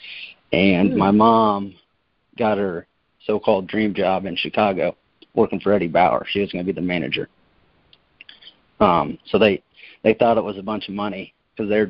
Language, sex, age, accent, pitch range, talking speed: English, male, 30-49, American, 95-110 Hz, 170 wpm